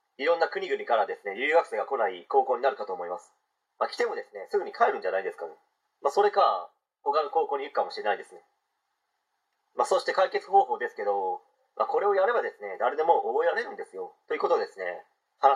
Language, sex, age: Japanese, male, 30-49